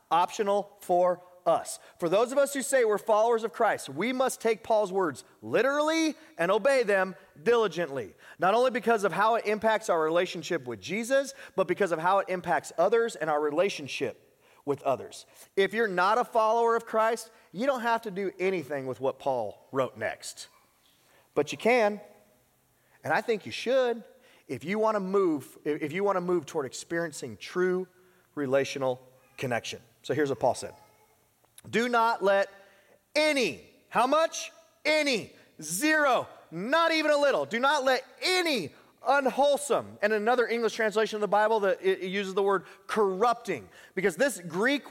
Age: 30-49